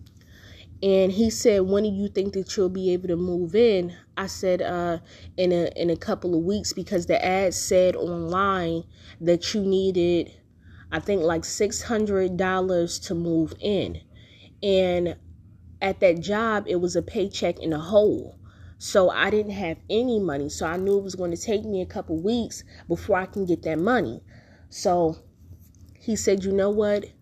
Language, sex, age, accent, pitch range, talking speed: English, female, 20-39, American, 130-195 Hz, 175 wpm